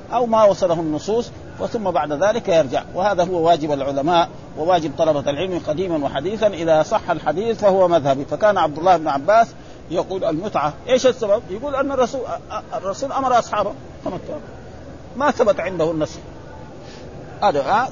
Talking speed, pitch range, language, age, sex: 145 wpm, 165-225 Hz, Arabic, 50-69, male